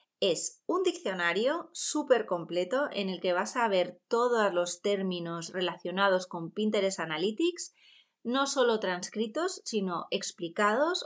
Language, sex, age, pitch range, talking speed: Spanish, female, 20-39, 180-245 Hz, 125 wpm